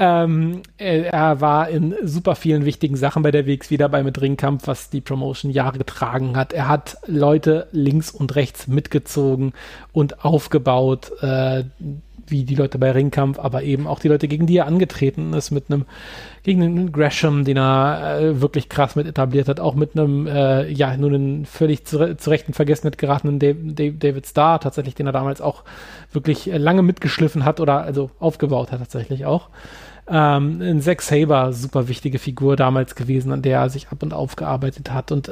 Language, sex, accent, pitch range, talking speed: German, male, German, 140-160 Hz, 180 wpm